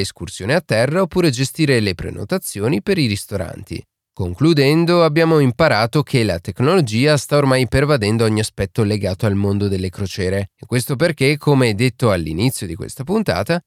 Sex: male